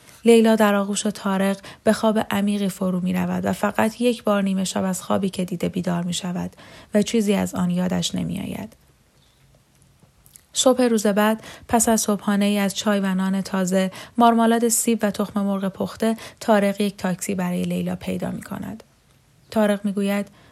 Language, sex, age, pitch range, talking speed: Persian, female, 10-29, 185-220 Hz, 170 wpm